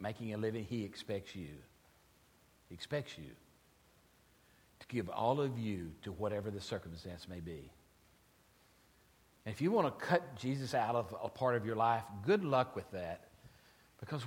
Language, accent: English, American